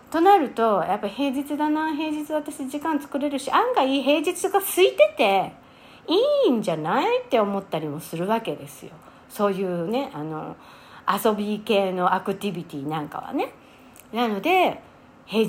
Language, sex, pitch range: Japanese, female, 180-275 Hz